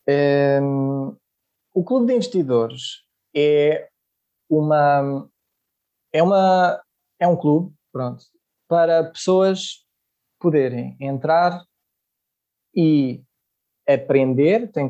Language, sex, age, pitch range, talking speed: Portuguese, male, 20-39, 130-165 Hz, 80 wpm